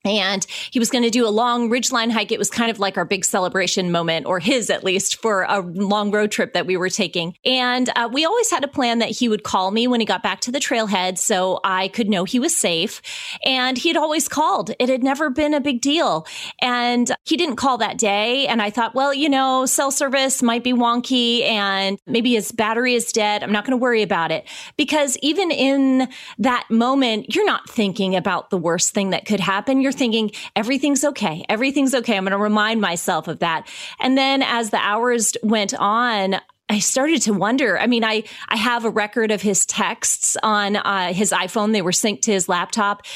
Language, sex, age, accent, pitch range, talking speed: English, female, 30-49, American, 195-245 Hz, 220 wpm